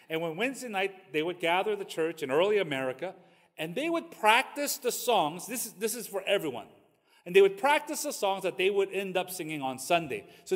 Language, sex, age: English, male, 40-59